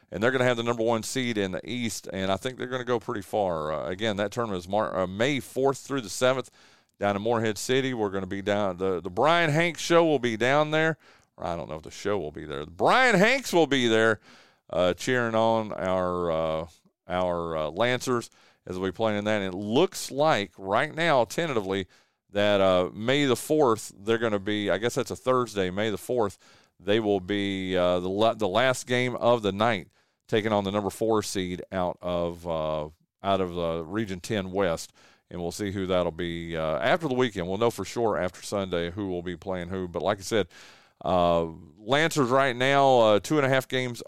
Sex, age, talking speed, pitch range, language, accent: male, 40-59, 225 wpm, 90-120 Hz, English, American